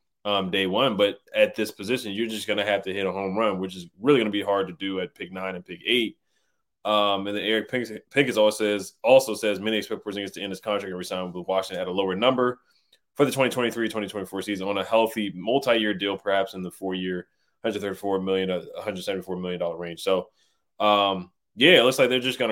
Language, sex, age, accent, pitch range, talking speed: English, male, 20-39, American, 95-120 Hz, 235 wpm